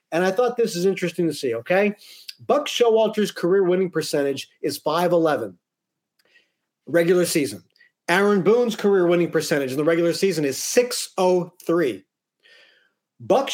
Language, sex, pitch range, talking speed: English, male, 165-235 Hz, 135 wpm